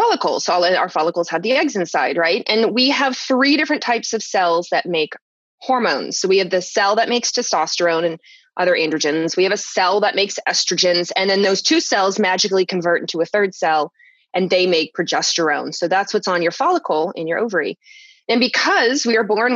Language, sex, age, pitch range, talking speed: English, female, 20-39, 185-245 Hz, 210 wpm